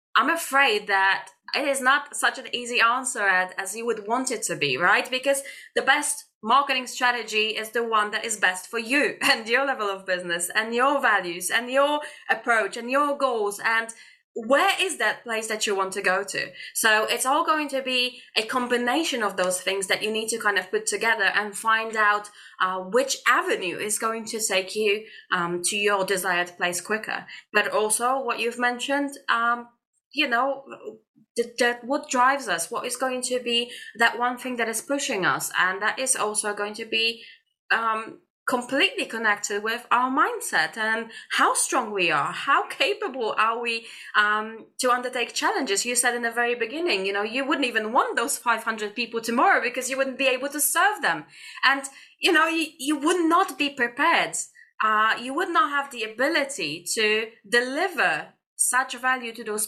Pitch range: 215-270 Hz